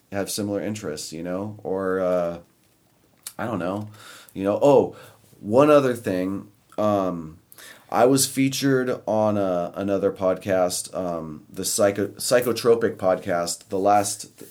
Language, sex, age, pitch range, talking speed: English, male, 30-49, 90-105 Hz, 130 wpm